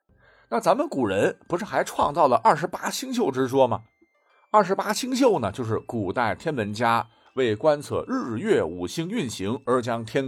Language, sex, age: Chinese, male, 50-69